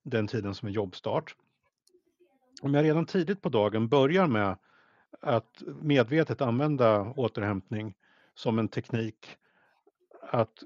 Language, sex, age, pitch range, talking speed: Swedish, male, 50-69, 115-155 Hz, 120 wpm